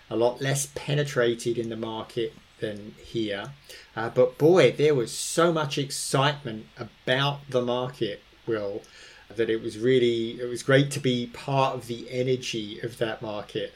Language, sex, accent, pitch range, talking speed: English, male, British, 115-135 Hz, 160 wpm